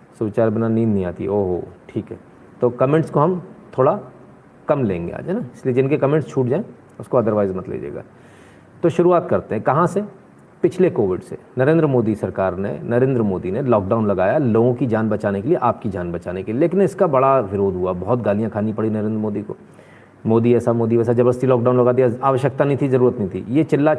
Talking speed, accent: 215 wpm, native